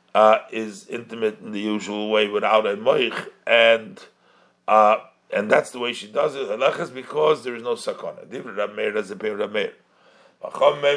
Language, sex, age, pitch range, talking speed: English, male, 50-69, 105-135 Hz, 135 wpm